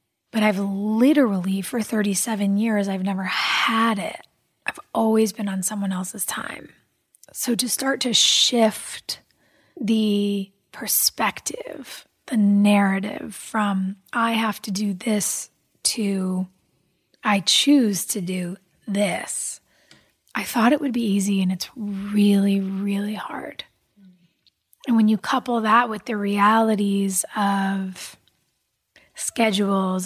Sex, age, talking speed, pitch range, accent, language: female, 20-39, 120 wpm, 195-230 Hz, American, English